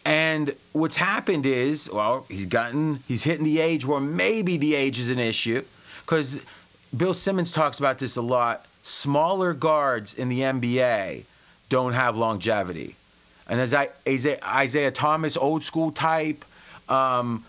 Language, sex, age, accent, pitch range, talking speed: English, male, 30-49, American, 125-160 Hz, 150 wpm